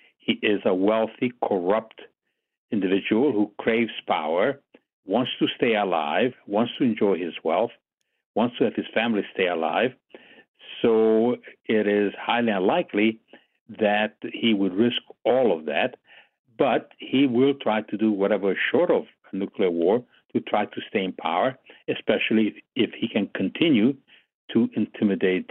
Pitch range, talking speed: 110-160 Hz, 150 wpm